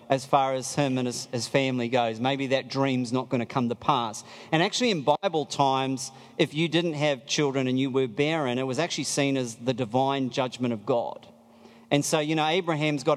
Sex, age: male, 40-59